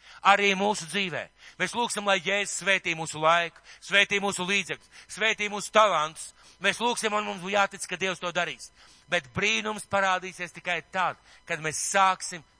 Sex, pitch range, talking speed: male, 165-205 Hz, 155 wpm